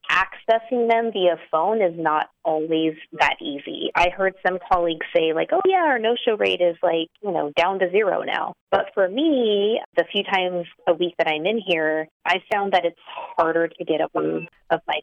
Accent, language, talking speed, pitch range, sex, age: American, English, 205 wpm, 155-185 Hz, female, 30-49